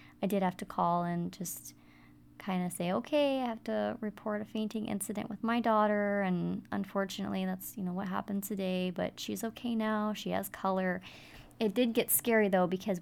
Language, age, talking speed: English, 20-39, 195 wpm